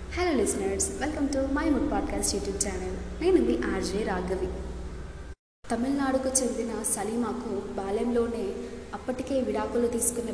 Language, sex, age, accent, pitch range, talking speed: Telugu, female, 20-39, native, 200-235 Hz, 110 wpm